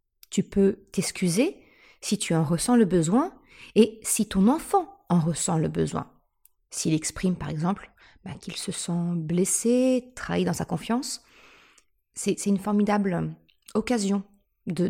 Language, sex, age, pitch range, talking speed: French, female, 30-49, 185-240 Hz, 145 wpm